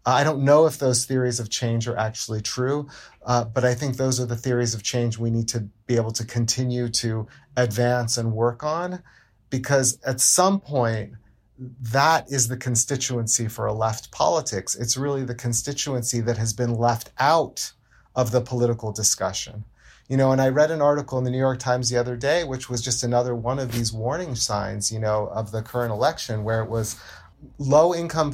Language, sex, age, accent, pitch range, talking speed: English, male, 30-49, American, 115-135 Hz, 195 wpm